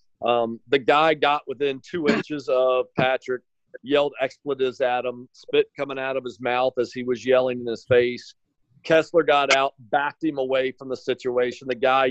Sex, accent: male, American